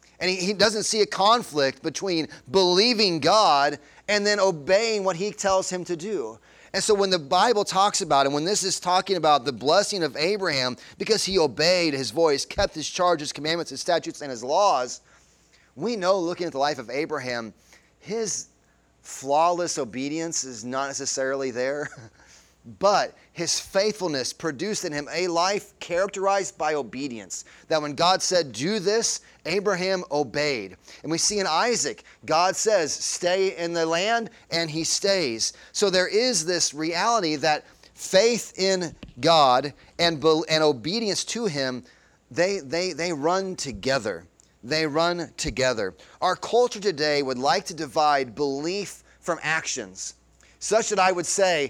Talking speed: 155 wpm